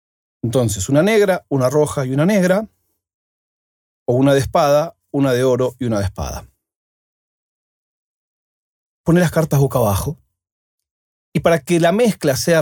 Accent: Argentinian